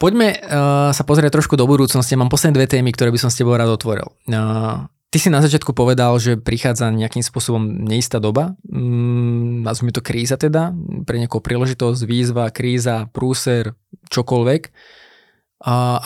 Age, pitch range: 20-39, 115-135 Hz